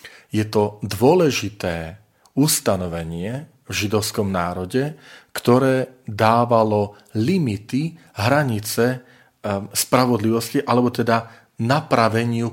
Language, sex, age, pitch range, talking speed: Slovak, male, 40-59, 100-120 Hz, 70 wpm